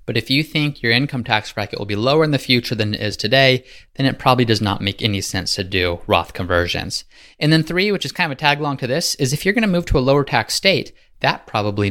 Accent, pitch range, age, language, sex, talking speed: American, 105-135 Hz, 20-39, English, male, 275 wpm